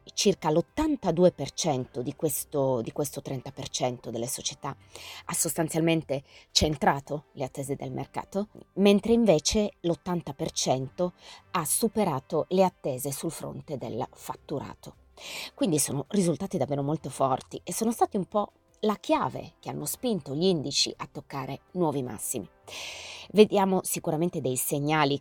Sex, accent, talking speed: female, native, 125 wpm